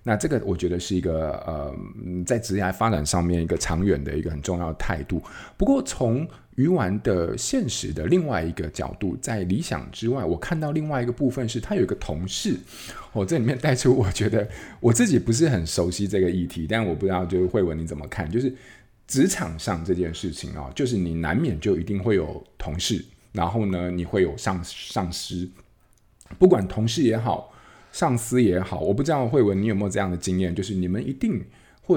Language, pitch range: Chinese, 90-120 Hz